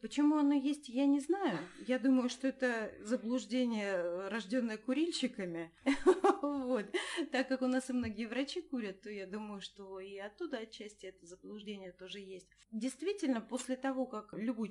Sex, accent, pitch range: female, native, 205-265 Hz